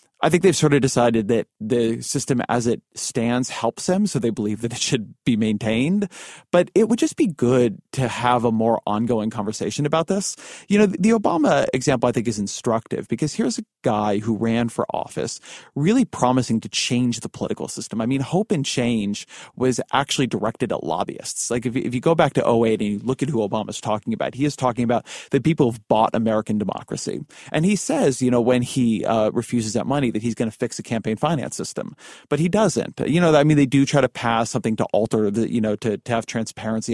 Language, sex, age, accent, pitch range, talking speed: English, male, 30-49, American, 110-140 Hz, 225 wpm